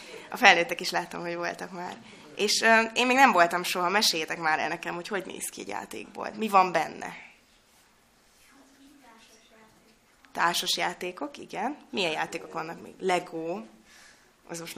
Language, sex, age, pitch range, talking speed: Hungarian, female, 20-39, 160-205 Hz, 145 wpm